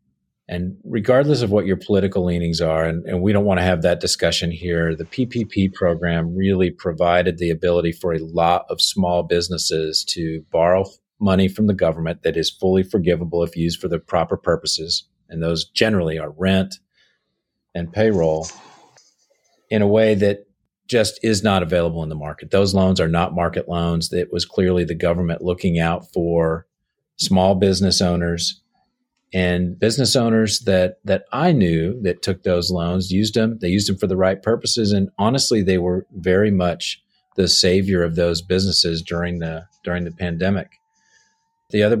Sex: male